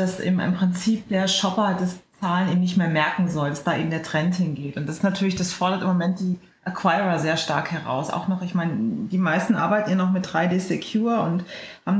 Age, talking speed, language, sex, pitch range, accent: 30-49, 225 wpm, German, female, 170-205 Hz, German